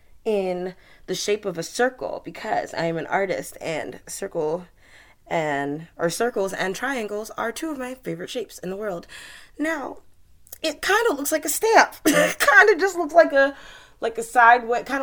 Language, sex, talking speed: English, female, 180 wpm